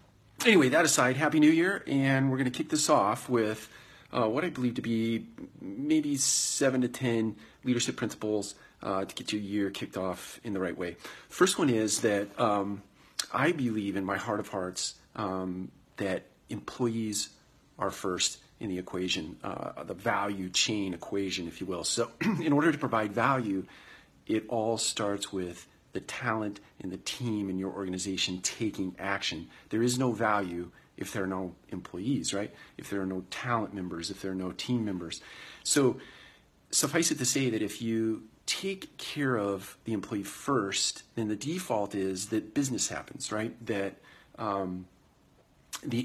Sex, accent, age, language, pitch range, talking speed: male, American, 40-59, English, 95-120 Hz, 170 wpm